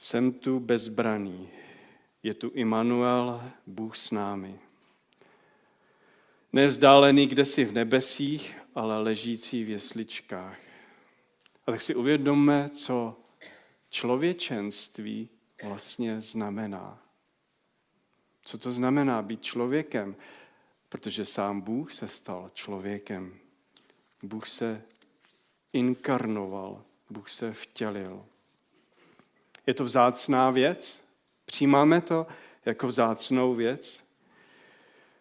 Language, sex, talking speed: Czech, male, 85 wpm